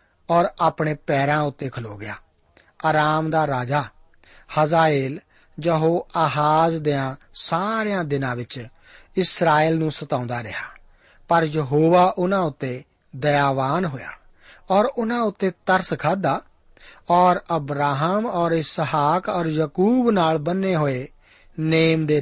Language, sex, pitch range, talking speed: Punjabi, male, 140-170 Hz, 80 wpm